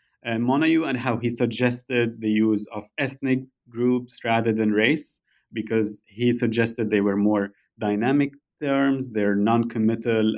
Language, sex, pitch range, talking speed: English, male, 105-135 Hz, 140 wpm